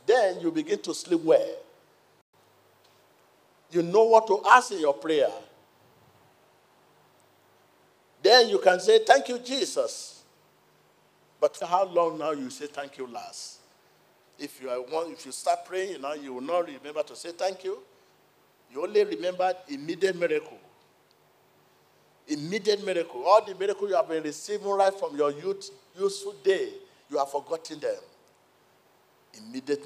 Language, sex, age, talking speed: English, male, 50-69, 145 wpm